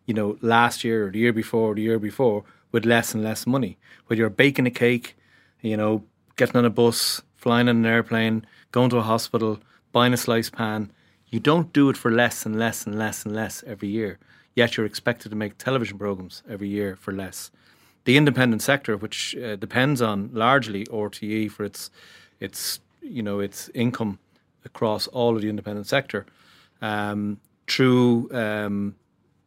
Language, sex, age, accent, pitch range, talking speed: English, male, 30-49, Irish, 105-120 Hz, 185 wpm